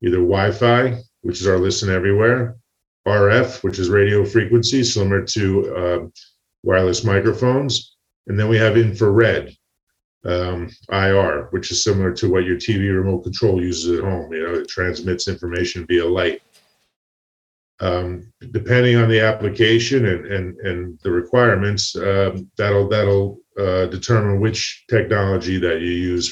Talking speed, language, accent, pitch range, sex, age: 140 wpm, English, American, 95-115 Hz, male, 40-59